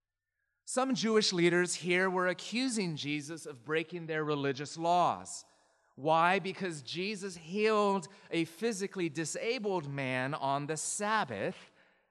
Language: English